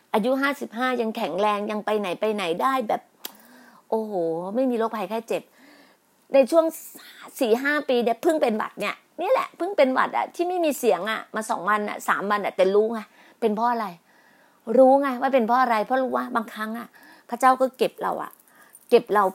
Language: Thai